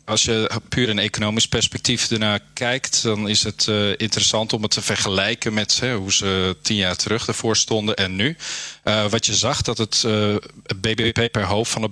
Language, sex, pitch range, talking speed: Dutch, male, 95-115 Hz, 205 wpm